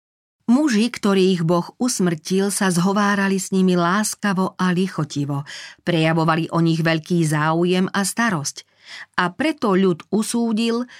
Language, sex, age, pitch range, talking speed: Slovak, female, 40-59, 160-200 Hz, 120 wpm